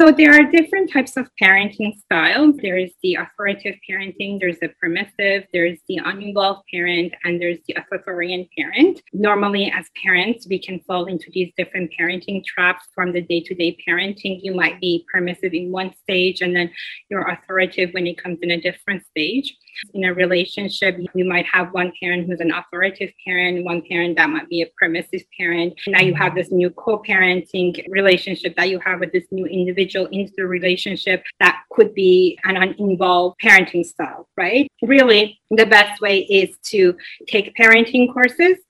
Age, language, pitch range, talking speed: 30-49, English, 180-205 Hz, 175 wpm